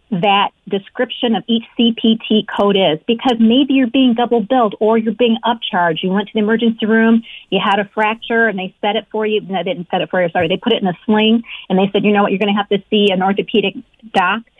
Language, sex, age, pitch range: English, female, 40-59, 200-235 Hz